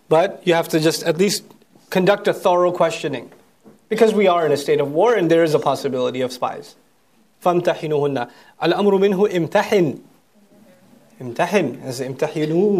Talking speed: 145 wpm